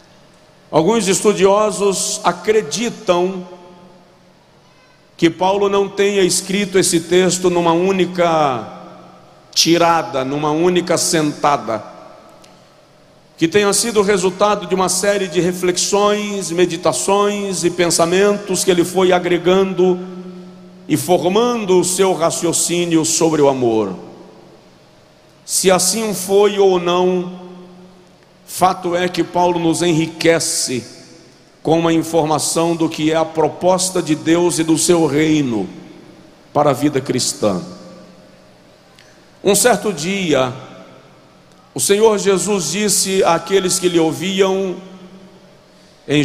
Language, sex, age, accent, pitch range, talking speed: Portuguese, male, 50-69, Brazilian, 160-195 Hz, 105 wpm